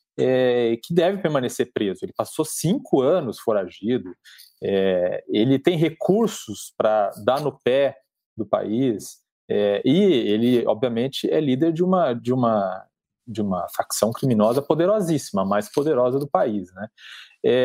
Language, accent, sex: Portuguese, Brazilian, male